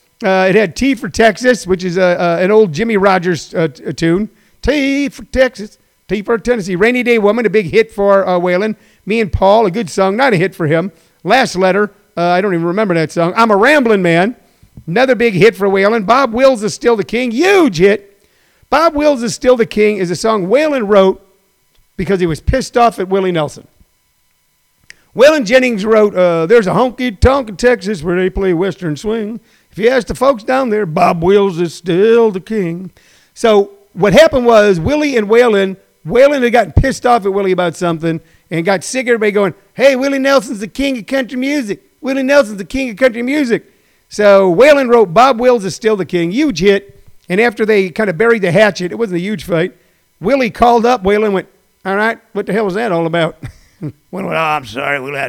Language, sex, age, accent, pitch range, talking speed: English, male, 50-69, American, 185-240 Hz, 210 wpm